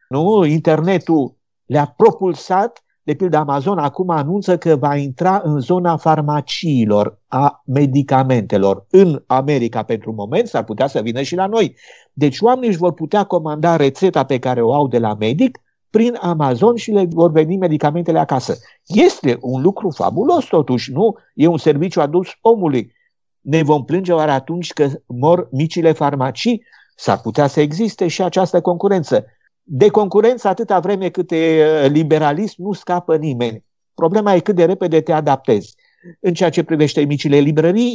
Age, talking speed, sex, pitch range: 50-69, 155 wpm, male, 140-185 Hz